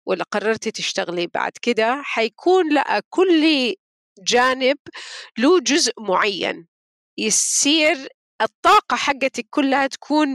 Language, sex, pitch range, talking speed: Arabic, female, 215-275 Hz, 100 wpm